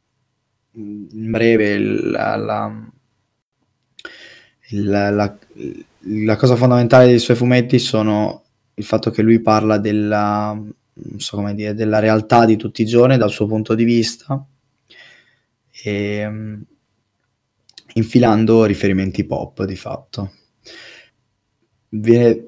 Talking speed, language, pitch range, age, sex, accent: 110 wpm, Italian, 105-120 Hz, 20-39, male, native